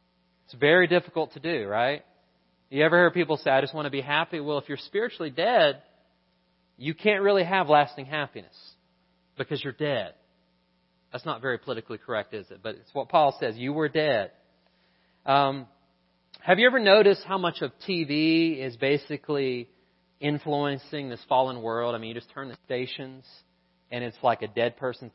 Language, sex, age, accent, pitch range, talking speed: English, male, 30-49, American, 115-155 Hz, 175 wpm